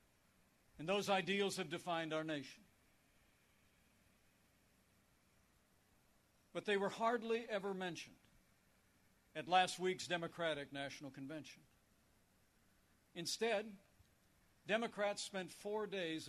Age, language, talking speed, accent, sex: 60-79, English, 90 wpm, American, male